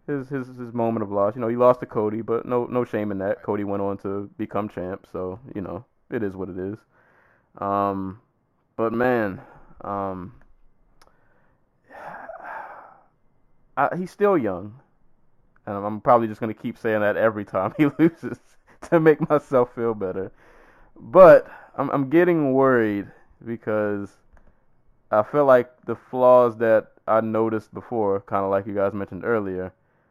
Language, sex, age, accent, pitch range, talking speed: English, male, 20-39, American, 95-125 Hz, 155 wpm